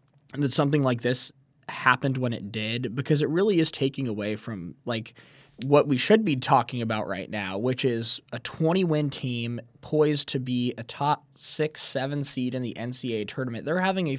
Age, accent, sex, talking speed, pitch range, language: 20-39, American, male, 180 wpm, 115-140 Hz, English